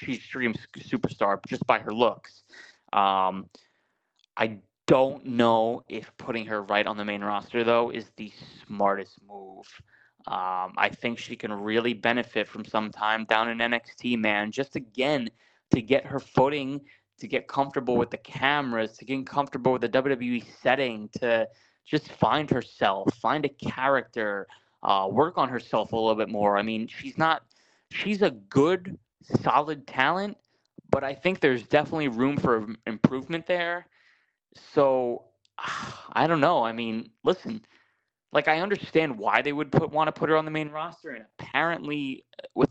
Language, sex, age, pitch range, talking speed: English, male, 20-39, 110-150 Hz, 160 wpm